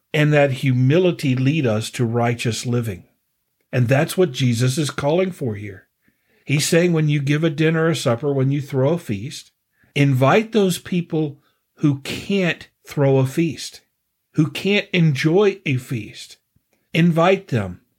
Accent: American